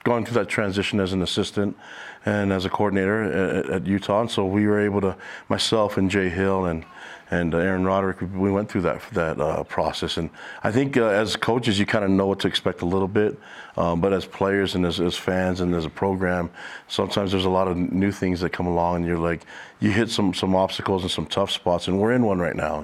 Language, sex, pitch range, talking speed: English, male, 90-100 Hz, 235 wpm